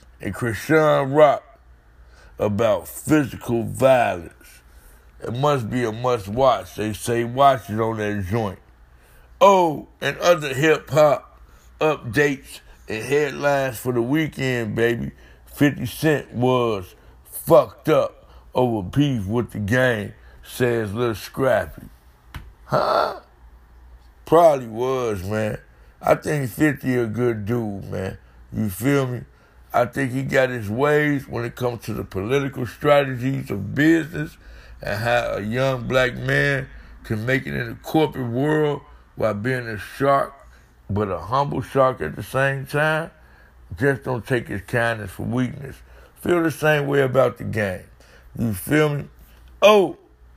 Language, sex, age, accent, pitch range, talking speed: English, male, 60-79, American, 100-135 Hz, 135 wpm